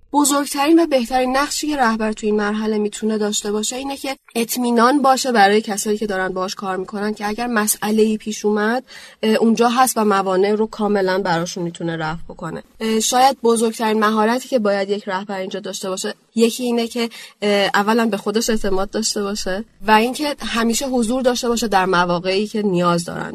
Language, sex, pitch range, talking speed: Persian, female, 200-245 Hz, 175 wpm